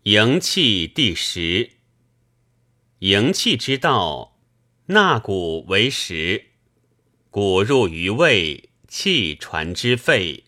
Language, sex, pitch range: Chinese, male, 100-130 Hz